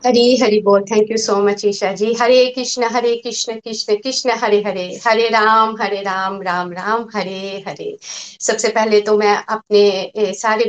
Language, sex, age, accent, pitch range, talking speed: Hindi, female, 50-69, native, 205-255 Hz, 180 wpm